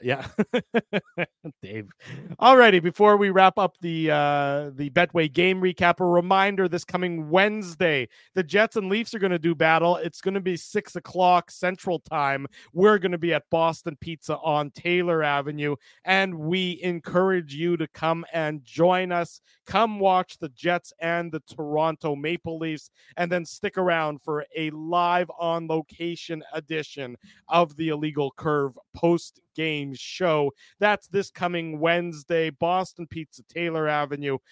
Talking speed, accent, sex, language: 150 wpm, American, male, English